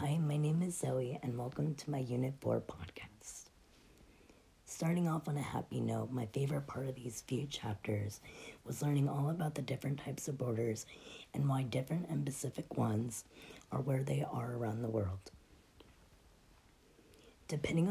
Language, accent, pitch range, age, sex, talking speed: English, American, 115-150 Hz, 30-49, female, 160 wpm